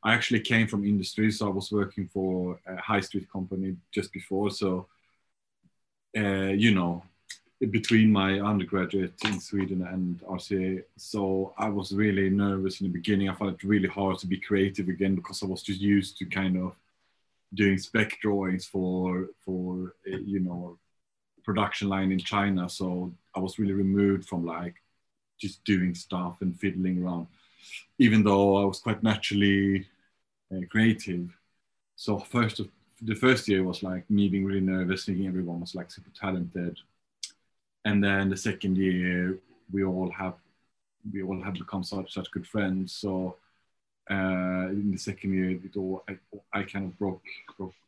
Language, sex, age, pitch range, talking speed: English, male, 30-49, 95-100 Hz, 165 wpm